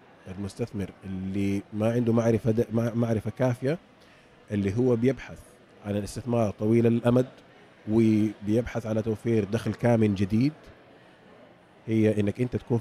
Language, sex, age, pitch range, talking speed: Arabic, male, 30-49, 100-135 Hz, 115 wpm